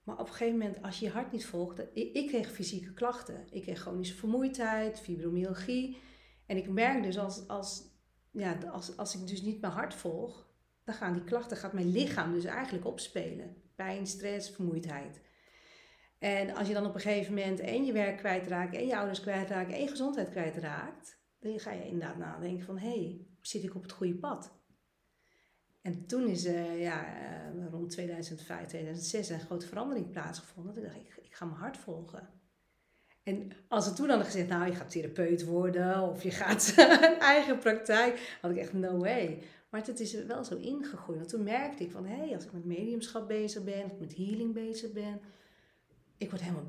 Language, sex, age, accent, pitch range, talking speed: Dutch, female, 40-59, Dutch, 175-220 Hz, 200 wpm